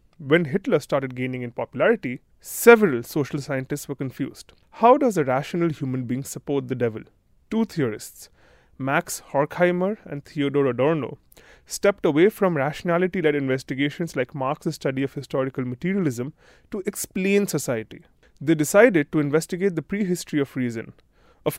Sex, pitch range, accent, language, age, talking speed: male, 135-175 Hz, Indian, English, 30-49, 140 wpm